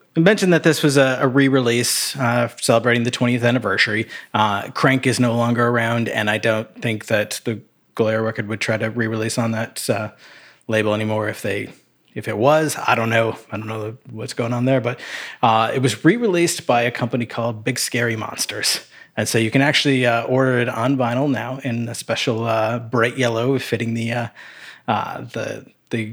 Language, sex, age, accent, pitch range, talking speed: English, male, 30-49, American, 110-135 Hz, 195 wpm